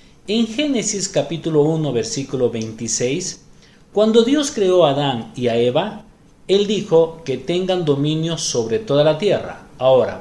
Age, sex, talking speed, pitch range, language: 40-59, male, 140 wpm, 140-195 Hz, Spanish